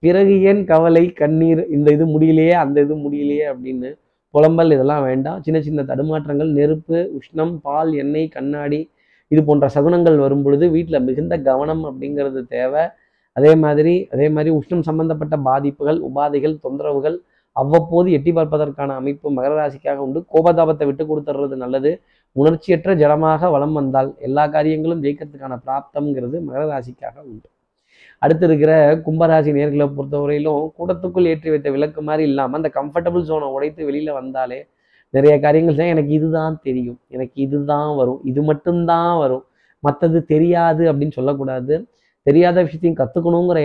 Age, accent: 20-39, native